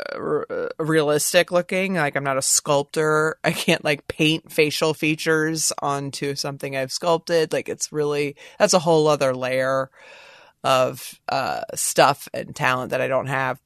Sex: female